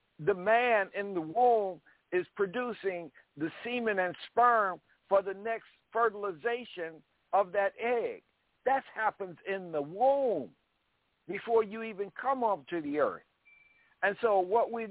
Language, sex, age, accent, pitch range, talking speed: English, male, 60-79, American, 170-230 Hz, 140 wpm